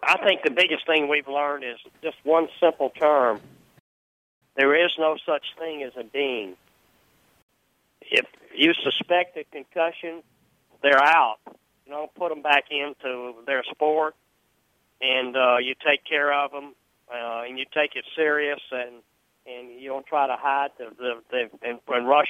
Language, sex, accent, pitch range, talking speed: English, male, American, 125-150 Hz, 165 wpm